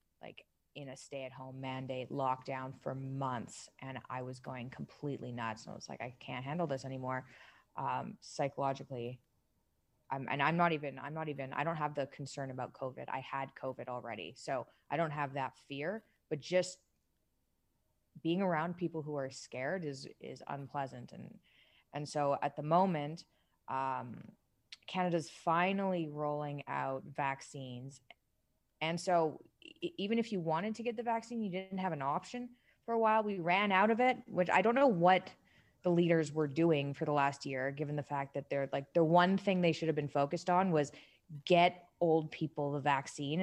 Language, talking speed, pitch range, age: English, 180 wpm, 135-175 Hz, 20-39